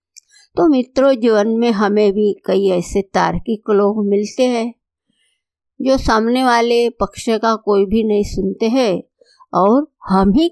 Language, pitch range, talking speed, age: Hindi, 195-265 Hz, 145 wpm, 50-69